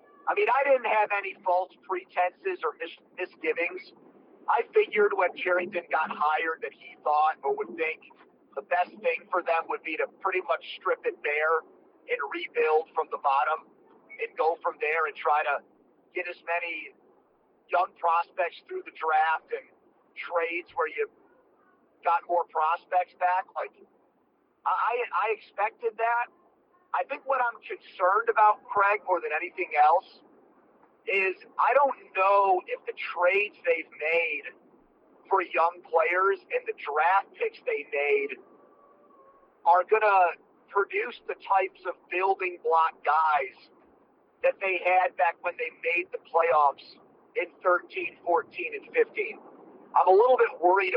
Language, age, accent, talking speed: English, 50-69, American, 150 wpm